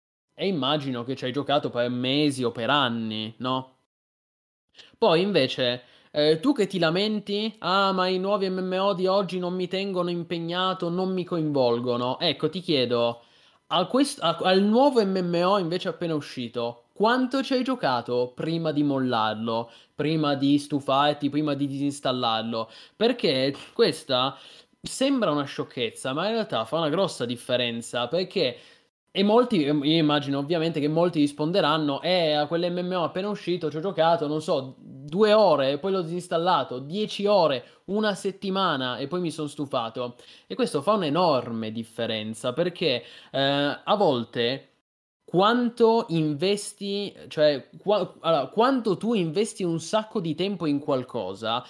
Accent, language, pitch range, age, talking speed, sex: native, Italian, 135-195 Hz, 20-39, 145 wpm, male